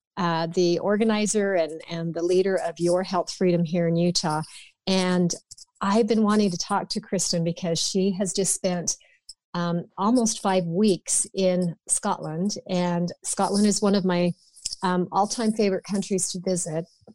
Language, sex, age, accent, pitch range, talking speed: English, female, 40-59, American, 175-205 Hz, 160 wpm